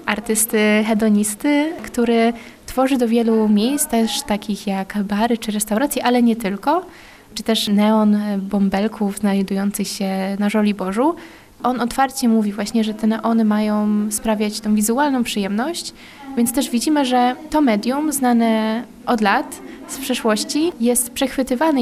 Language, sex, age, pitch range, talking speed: Polish, female, 20-39, 210-245 Hz, 140 wpm